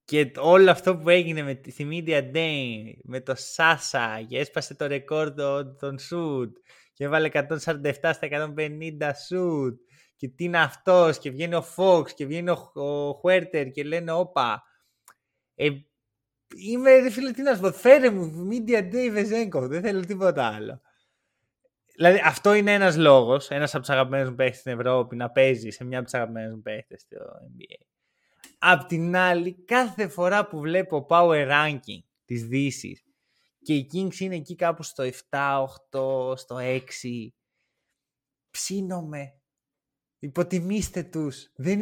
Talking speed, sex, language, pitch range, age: 145 wpm, male, Greek, 135-180 Hz, 20-39